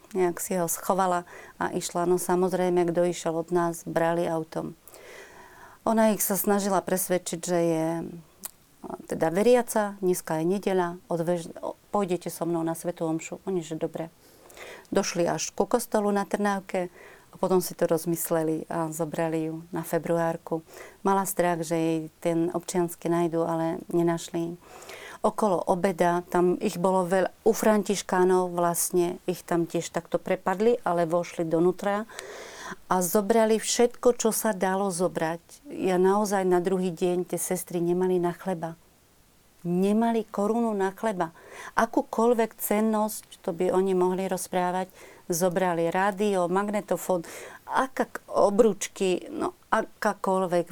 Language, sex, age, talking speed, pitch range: Slovak, female, 30-49, 130 wpm, 170-200 Hz